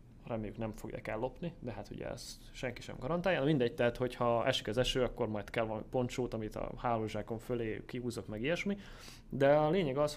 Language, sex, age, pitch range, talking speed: Hungarian, male, 30-49, 120-140 Hz, 200 wpm